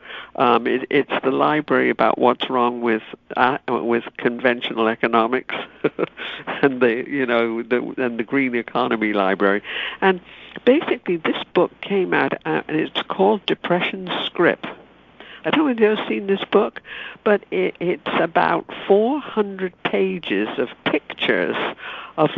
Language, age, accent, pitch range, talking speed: English, 60-79, British, 130-190 Hz, 140 wpm